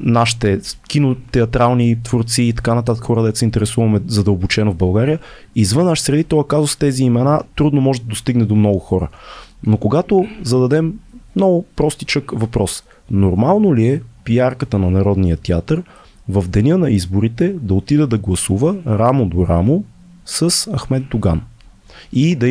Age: 30-49